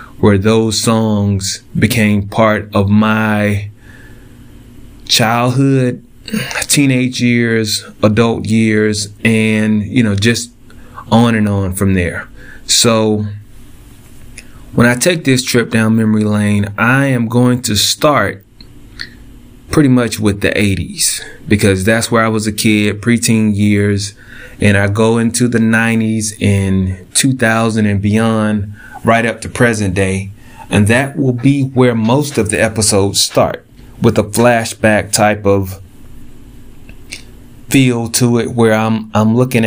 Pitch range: 105-120 Hz